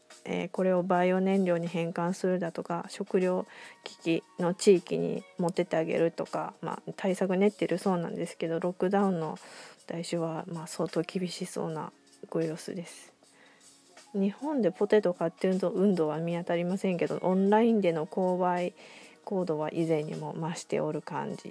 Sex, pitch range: female, 170-200 Hz